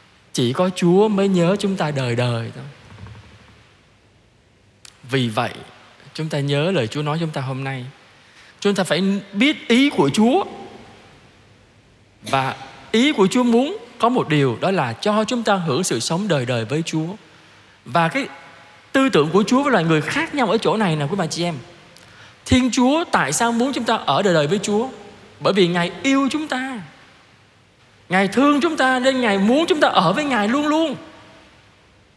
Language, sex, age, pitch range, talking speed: Vietnamese, male, 20-39, 140-235 Hz, 185 wpm